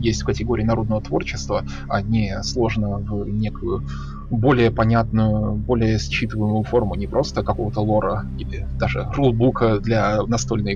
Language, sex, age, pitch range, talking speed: Russian, male, 20-39, 105-130 Hz, 135 wpm